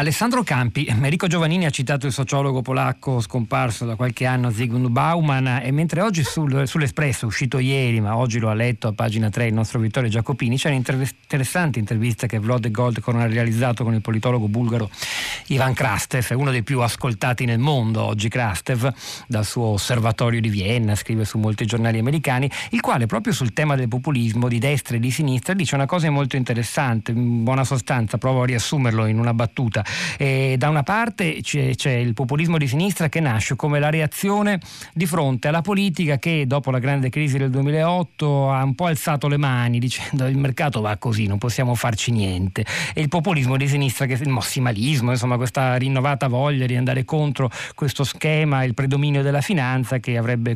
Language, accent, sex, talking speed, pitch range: Italian, native, male, 185 wpm, 120-145 Hz